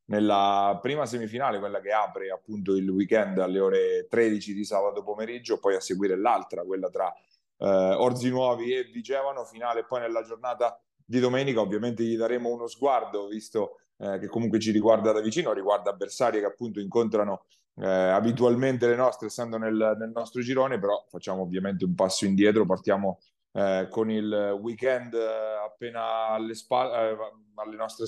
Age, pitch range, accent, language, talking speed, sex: 30-49, 105-120 Hz, native, Italian, 160 wpm, male